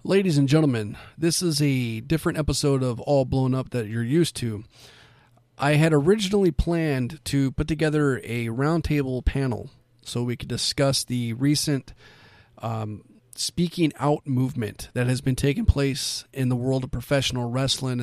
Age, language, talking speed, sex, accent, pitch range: 40-59, English, 155 wpm, male, American, 120-140 Hz